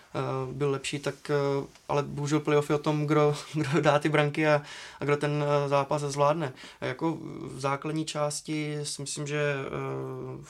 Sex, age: male, 20-39